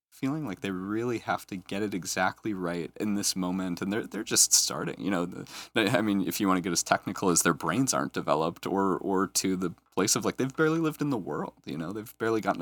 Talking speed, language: 245 wpm, English